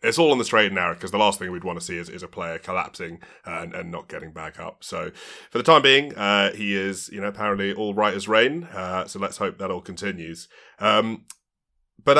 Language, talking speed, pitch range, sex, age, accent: English, 240 wpm, 95-125 Hz, male, 30-49, British